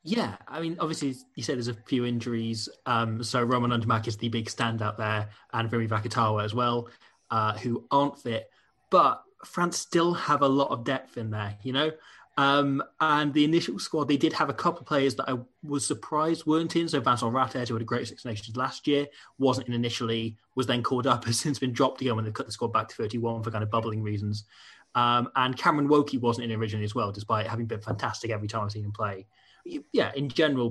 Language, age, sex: English, 20-39, male